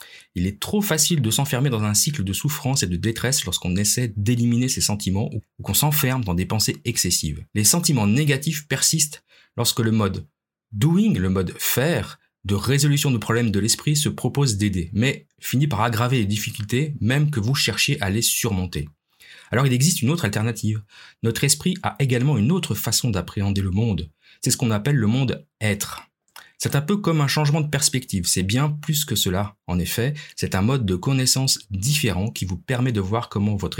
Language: French